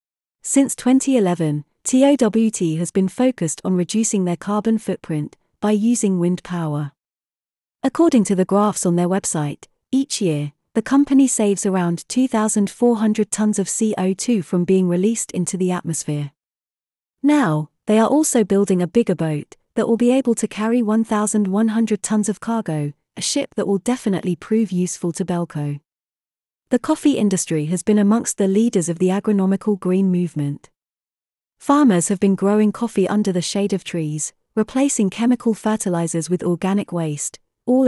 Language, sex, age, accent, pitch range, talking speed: English, female, 30-49, British, 175-225 Hz, 150 wpm